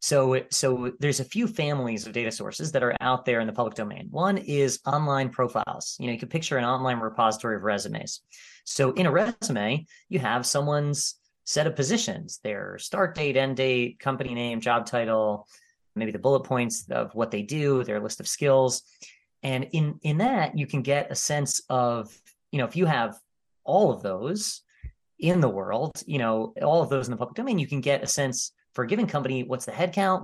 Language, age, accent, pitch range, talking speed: English, 30-49, American, 120-160 Hz, 205 wpm